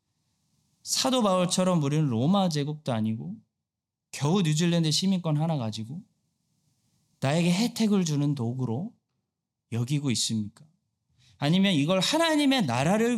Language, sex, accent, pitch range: Korean, male, native, 115-180 Hz